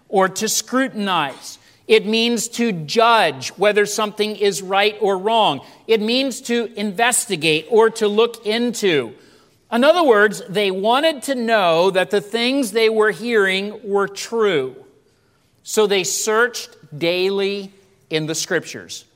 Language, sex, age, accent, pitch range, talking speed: English, male, 40-59, American, 170-220 Hz, 135 wpm